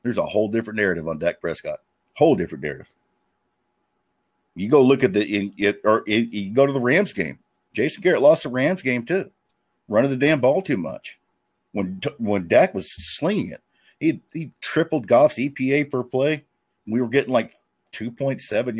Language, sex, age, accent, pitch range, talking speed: English, male, 50-69, American, 110-140 Hz, 185 wpm